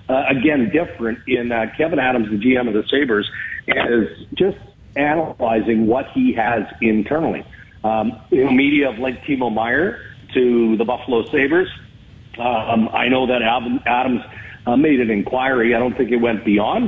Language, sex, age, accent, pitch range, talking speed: English, male, 50-69, American, 115-145 Hz, 155 wpm